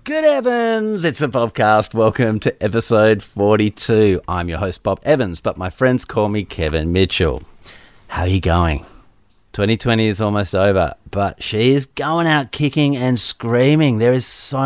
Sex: male